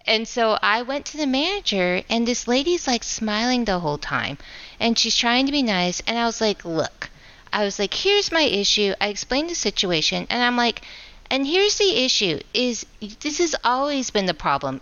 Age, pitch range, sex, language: 40-59, 185-240 Hz, female, English